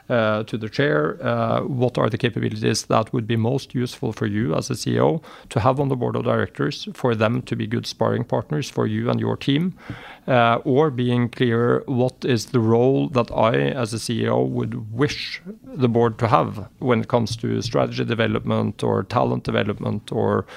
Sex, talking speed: male, 195 wpm